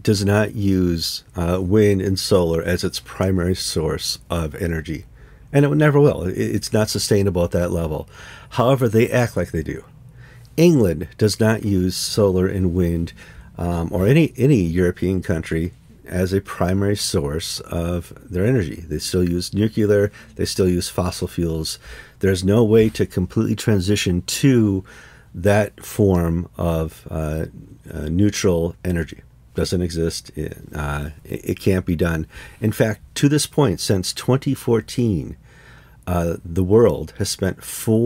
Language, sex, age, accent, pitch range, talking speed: English, male, 50-69, American, 85-110 Hz, 145 wpm